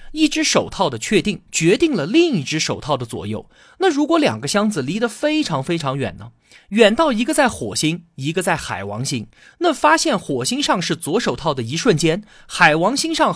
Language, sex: Chinese, male